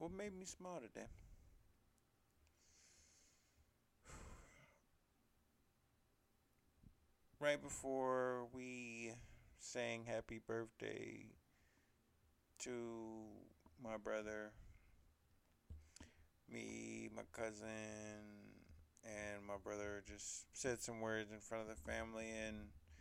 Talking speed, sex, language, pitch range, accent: 80 wpm, male, English, 85-125 Hz, American